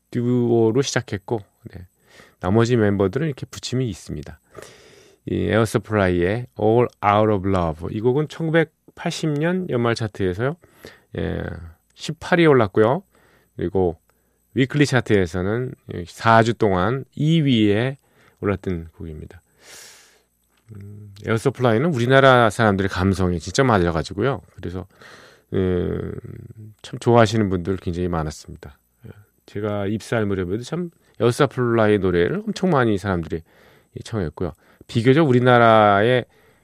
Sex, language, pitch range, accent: male, Korean, 90-120 Hz, native